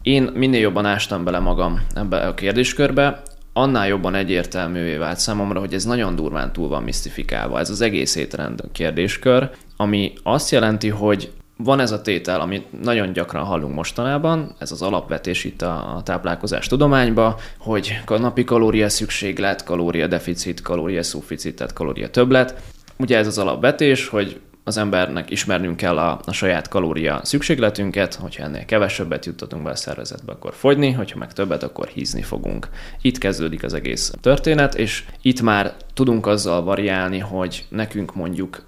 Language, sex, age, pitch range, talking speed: Hungarian, male, 20-39, 90-110 Hz, 155 wpm